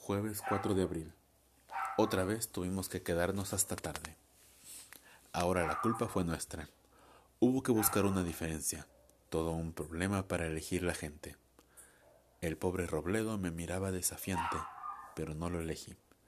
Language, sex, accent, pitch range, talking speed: Spanish, male, Mexican, 80-95 Hz, 140 wpm